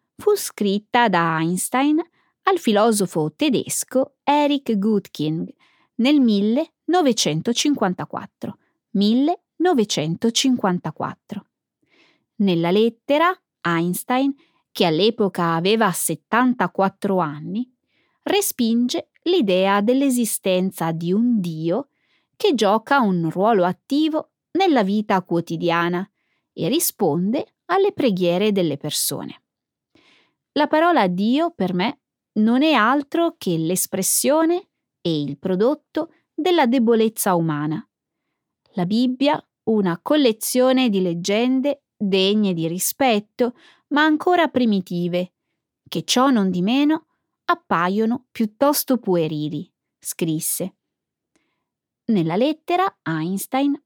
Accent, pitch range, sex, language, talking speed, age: native, 180-285 Hz, female, Italian, 90 wpm, 20-39